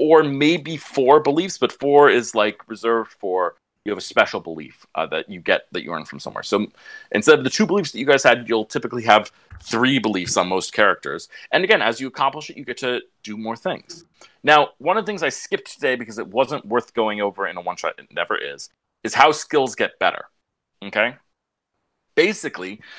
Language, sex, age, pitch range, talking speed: English, male, 30-49, 115-175 Hz, 215 wpm